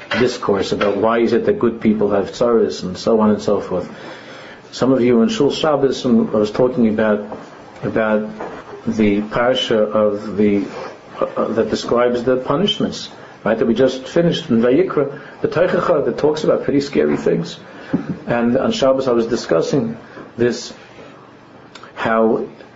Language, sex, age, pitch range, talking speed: English, male, 50-69, 110-135 Hz, 155 wpm